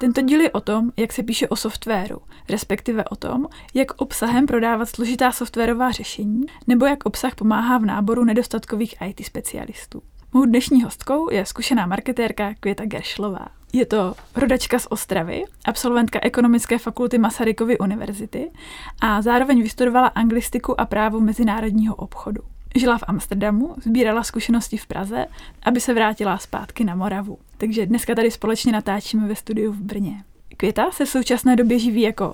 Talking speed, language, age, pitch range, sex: 155 wpm, Czech, 20-39, 210-245 Hz, female